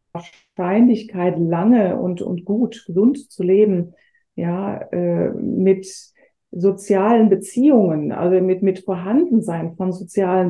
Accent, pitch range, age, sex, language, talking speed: German, 190-235 Hz, 20-39, female, German, 110 wpm